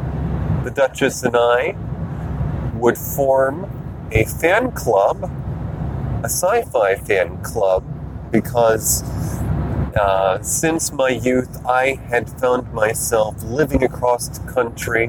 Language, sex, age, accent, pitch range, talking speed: English, male, 30-49, American, 110-140 Hz, 100 wpm